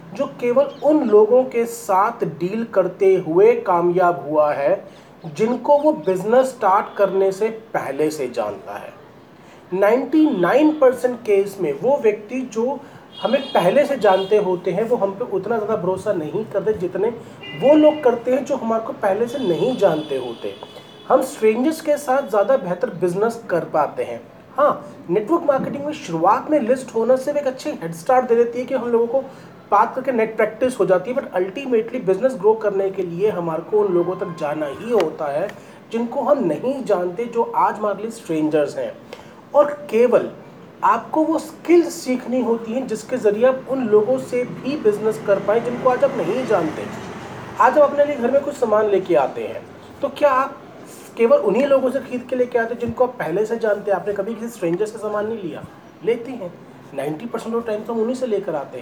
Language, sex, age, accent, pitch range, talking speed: Hindi, male, 40-59, native, 195-265 Hz, 185 wpm